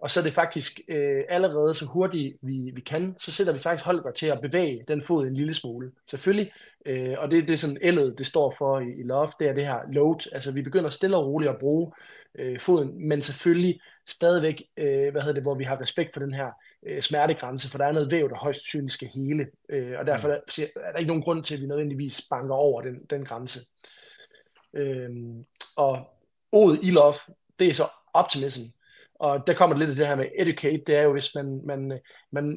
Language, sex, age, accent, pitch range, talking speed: Danish, male, 20-39, native, 135-160 Hz, 225 wpm